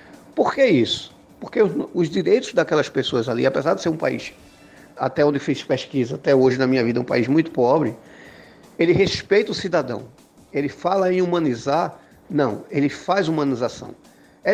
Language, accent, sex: Portuguese, Brazilian, male